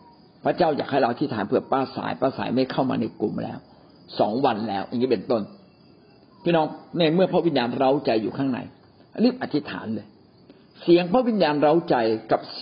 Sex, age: male, 60-79